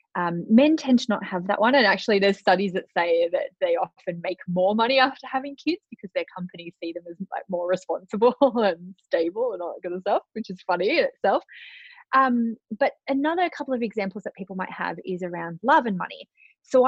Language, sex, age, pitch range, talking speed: English, female, 20-39, 185-265 Hz, 215 wpm